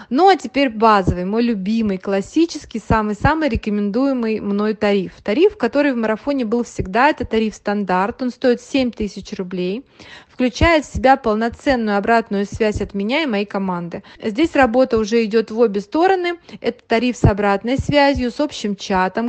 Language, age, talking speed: English, 20-39, 160 wpm